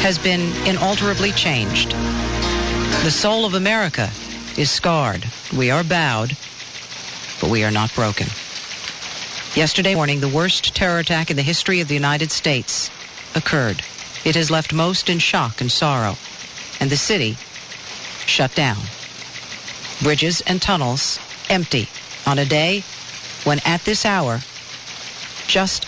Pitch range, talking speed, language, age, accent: 130-185 Hz, 130 wpm, English, 50-69, American